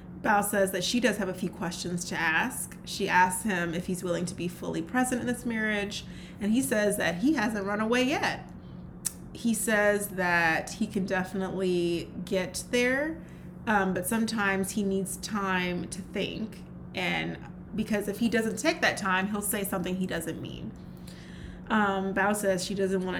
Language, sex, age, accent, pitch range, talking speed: English, female, 20-39, American, 185-225 Hz, 180 wpm